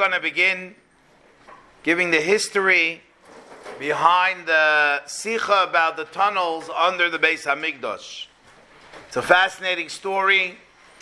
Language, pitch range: English, 165-220 Hz